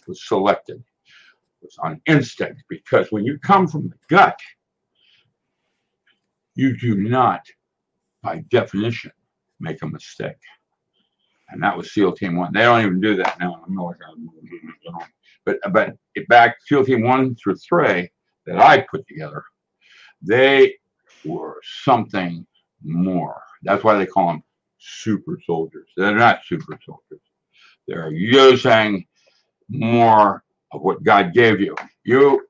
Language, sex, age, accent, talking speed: English, male, 60-79, American, 125 wpm